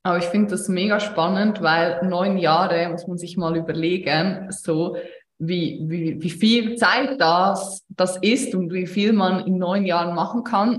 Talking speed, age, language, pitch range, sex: 180 wpm, 20-39, German, 175-205 Hz, female